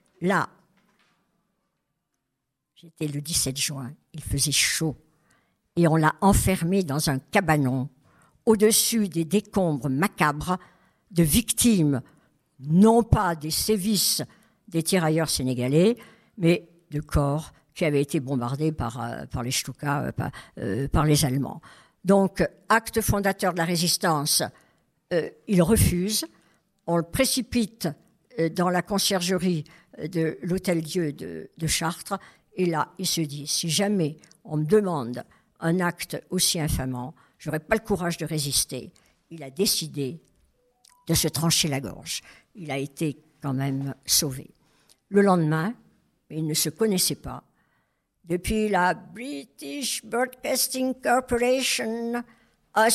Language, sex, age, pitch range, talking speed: French, male, 60-79, 150-205 Hz, 125 wpm